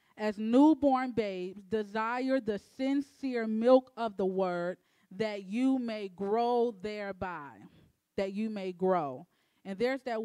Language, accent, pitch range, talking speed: English, American, 210-265 Hz, 130 wpm